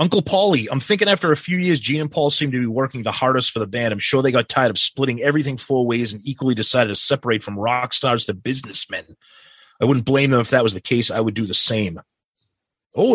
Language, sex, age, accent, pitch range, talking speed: English, male, 30-49, American, 120-150 Hz, 250 wpm